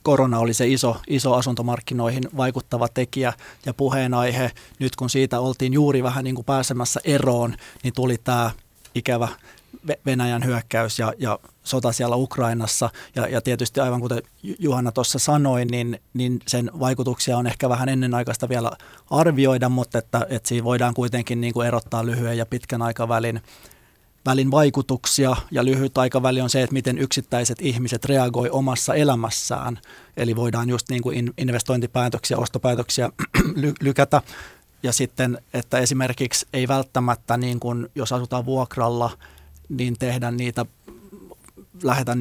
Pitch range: 120-130 Hz